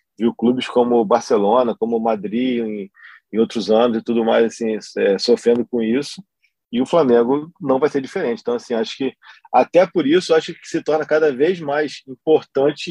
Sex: male